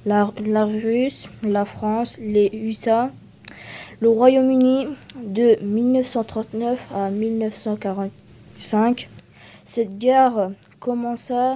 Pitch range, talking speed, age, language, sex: 210-235 Hz, 85 wpm, 20-39, French, female